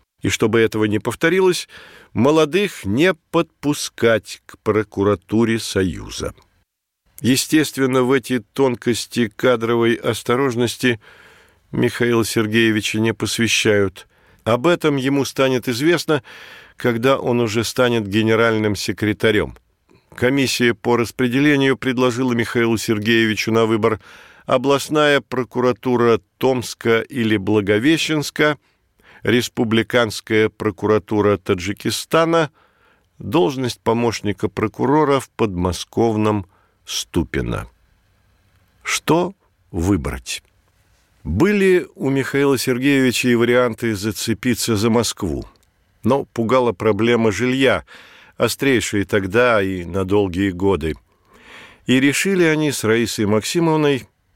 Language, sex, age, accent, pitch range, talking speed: Russian, male, 50-69, native, 100-130 Hz, 90 wpm